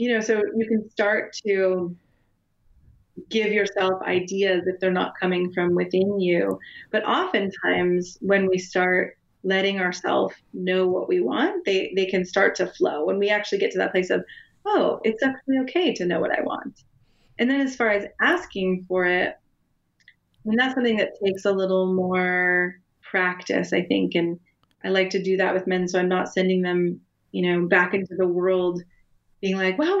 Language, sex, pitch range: English, female, 185-210 Hz